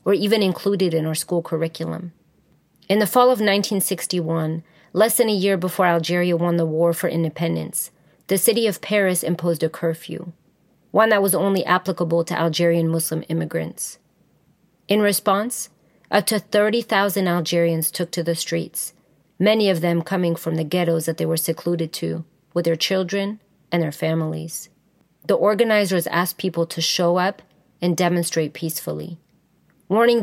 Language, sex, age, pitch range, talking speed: English, female, 30-49, 165-195 Hz, 155 wpm